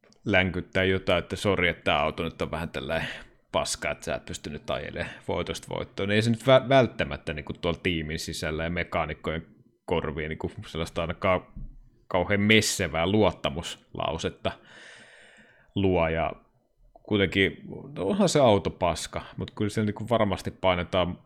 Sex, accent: male, native